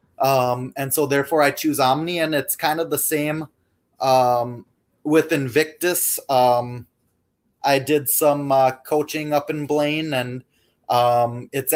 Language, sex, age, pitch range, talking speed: English, male, 20-39, 120-145 Hz, 145 wpm